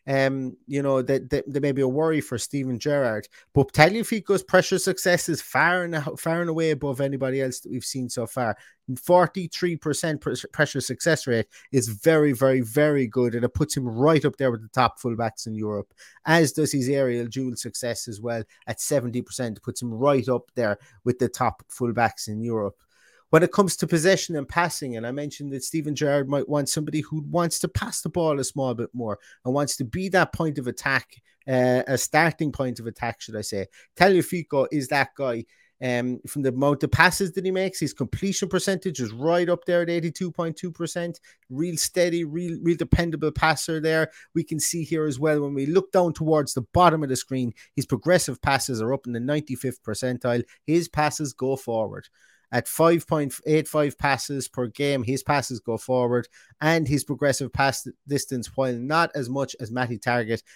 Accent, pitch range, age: British, 125-160 Hz, 30-49